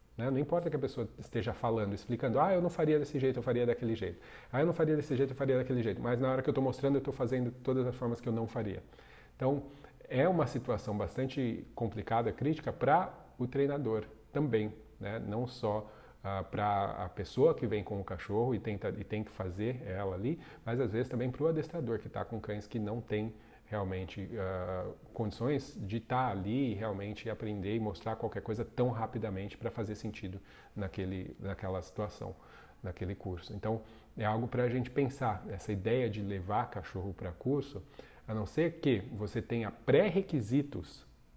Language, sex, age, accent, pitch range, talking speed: Portuguese, male, 40-59, Brazilian, 105-130 Hz, 190 wpm